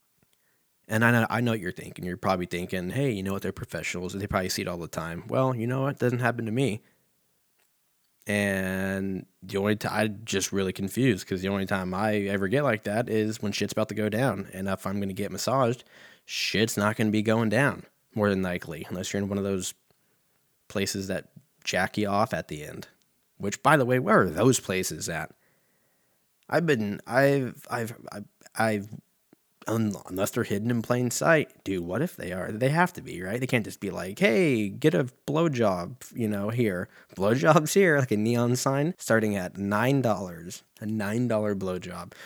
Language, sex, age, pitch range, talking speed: English, male, 20-39, 95-125 Hz, 205 wpm